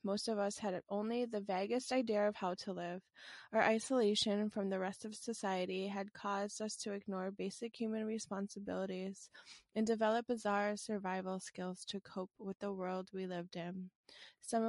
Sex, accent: female, American